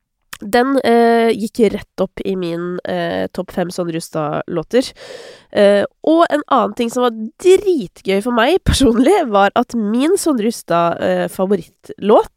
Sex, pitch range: female, 195-265 Hz